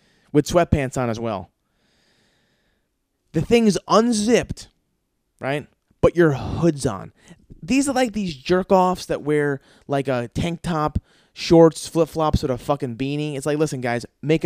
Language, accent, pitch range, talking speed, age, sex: English, American, 130-170 Hz, 145 wpm, 20-39, male